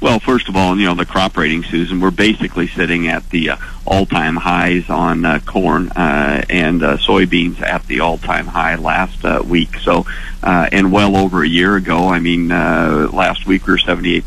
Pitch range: 90-100 Hz